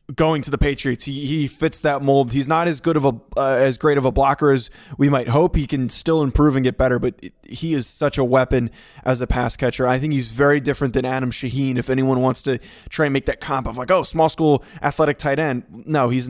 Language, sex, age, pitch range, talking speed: English, male, 20-39, 125-140 Hz, 260 wpm